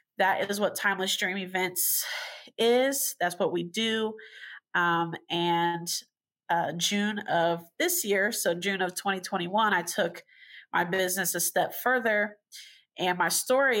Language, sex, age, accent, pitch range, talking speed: English, female, 30-49, American, 170-210 Hz, 140 wpm